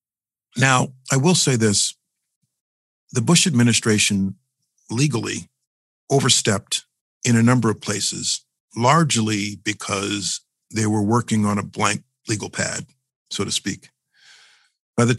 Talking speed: 120 wpm